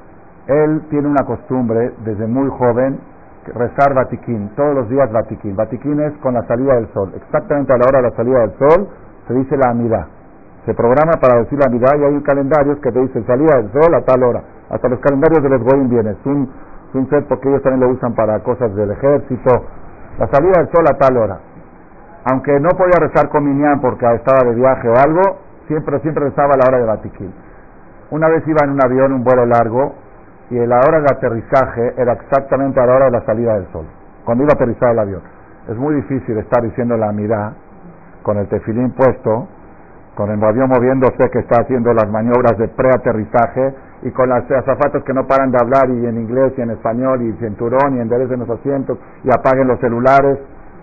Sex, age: male, 50-69